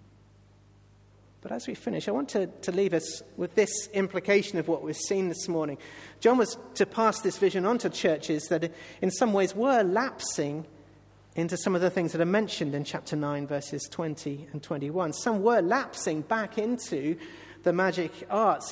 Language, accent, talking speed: English, British, 185 wpm